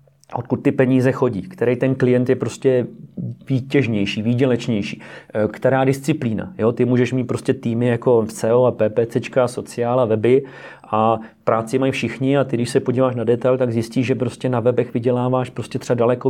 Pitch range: 120-130 Hz